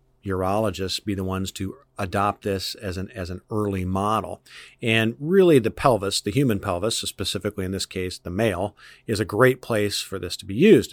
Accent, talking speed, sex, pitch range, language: American, 190 wpm, male, 95-115 Hz, English